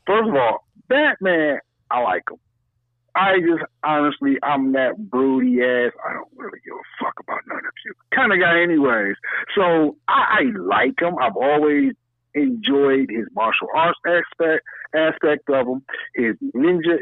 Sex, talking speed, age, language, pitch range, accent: male, 160 wpm, 60-79, English, 120-185 Hz, American